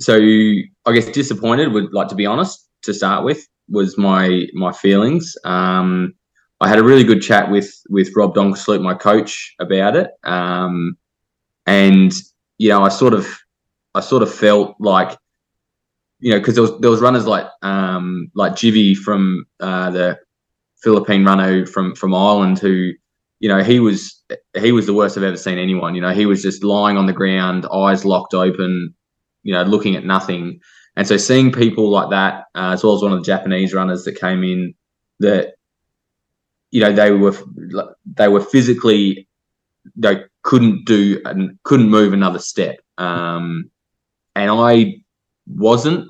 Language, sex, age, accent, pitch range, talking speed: English, male, 20-39, Australian, 95-110 Hz, 170 wpm